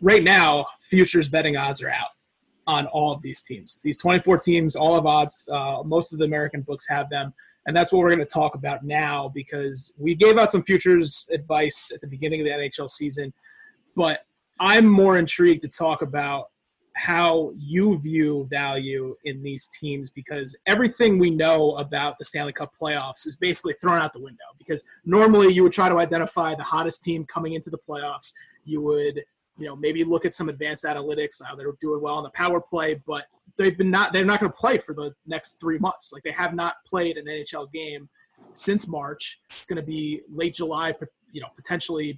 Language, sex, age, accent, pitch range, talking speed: English, male, 20-39, American, 150-175 Hz, 205 wpm